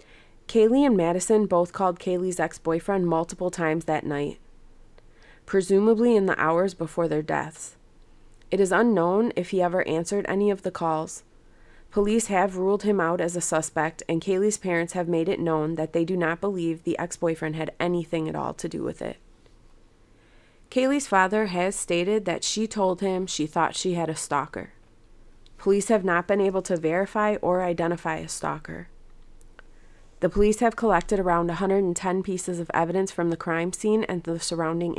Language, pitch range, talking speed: English, 165-195 Hz, 170 wpm